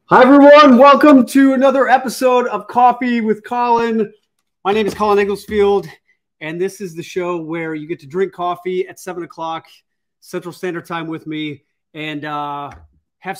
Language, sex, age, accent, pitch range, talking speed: English, male, 30-49, American, 155-205 Hz, 165 wpm